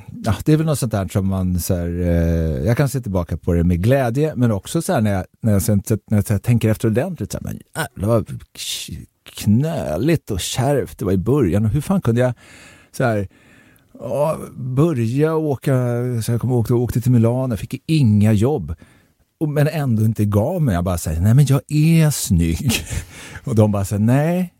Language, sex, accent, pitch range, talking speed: Swedish, male, native, 95-135 Hz, 205 wpm